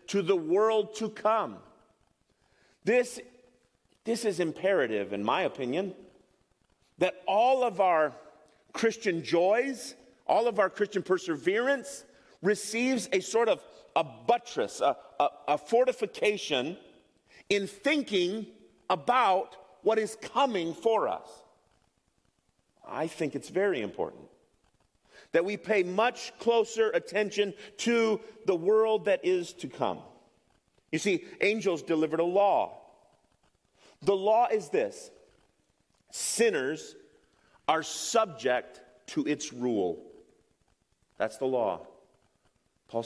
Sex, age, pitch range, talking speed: male, 40-59, 155-240 Hz, 110 wpm